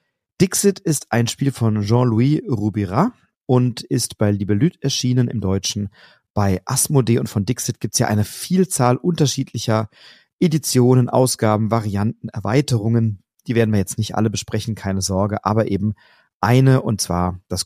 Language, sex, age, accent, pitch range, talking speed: German, male, 40-59, German, 105-125 Hz, 150 wpm